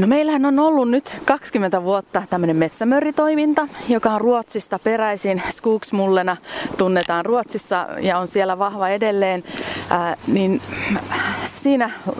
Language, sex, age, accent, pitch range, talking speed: Finnish, female, 30-49, native, 180-245 Hz, 120 wpm